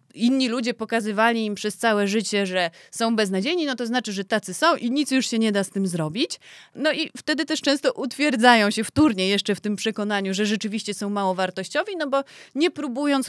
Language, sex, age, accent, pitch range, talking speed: Polish, female, 20-39, native, 215-265 Hz, 210 wpm